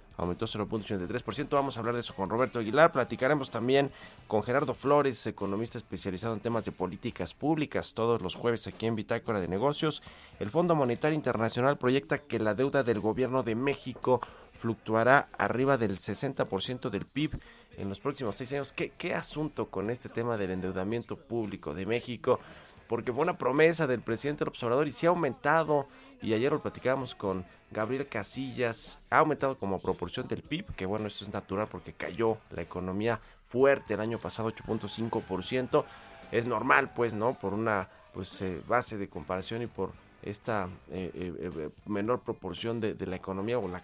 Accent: Mexican